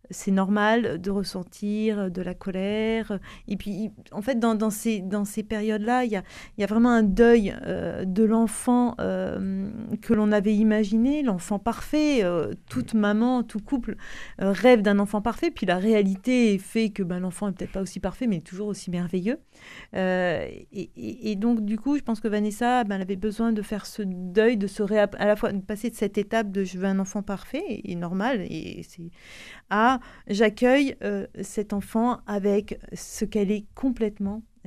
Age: 40-59